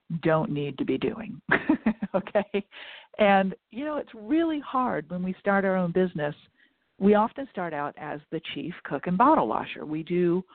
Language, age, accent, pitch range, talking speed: English, 50-69, American, 165-225 Hz, 175 wpm